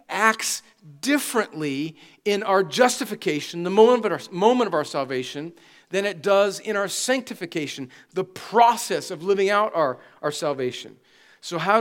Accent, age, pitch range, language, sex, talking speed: American, 40-59, 165-220 Hz, English, male, 135 wpm